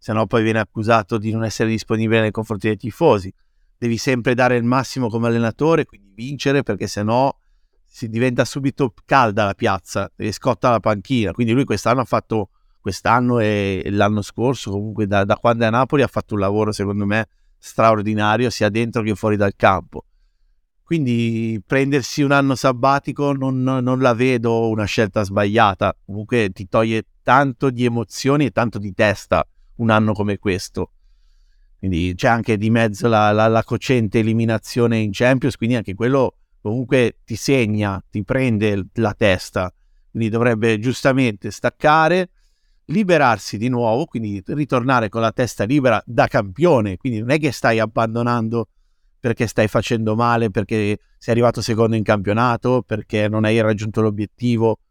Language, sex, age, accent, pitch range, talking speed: Italian, male, 50-69, native, 105-130 Hz, 160 wpm